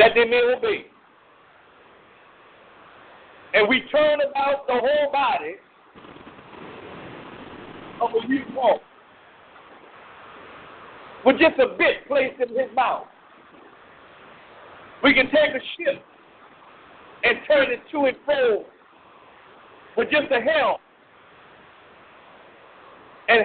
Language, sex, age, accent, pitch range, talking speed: English, male, 50-69, American, 260-315 Hz, 95 wpm